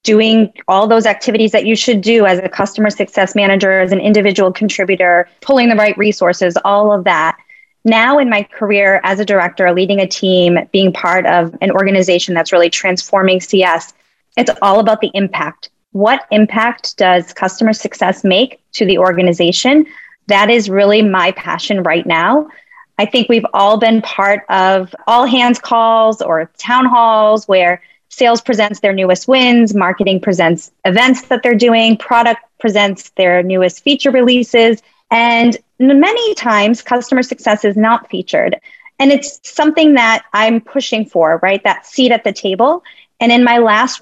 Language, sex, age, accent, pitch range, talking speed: English, female, 20-39, American, 190-235 Hz, 165 wpm